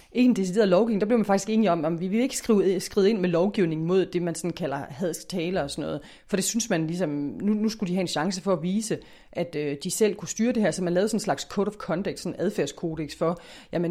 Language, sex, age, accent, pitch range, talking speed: Danish, female, 30-49, native, 155-195 Hz, 270 wpm